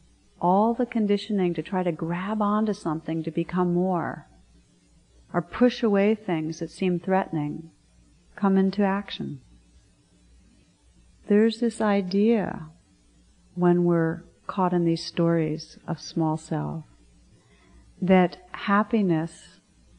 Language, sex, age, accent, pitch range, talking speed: English, female, 40-59, American, 155-200 Hz, 110 wpm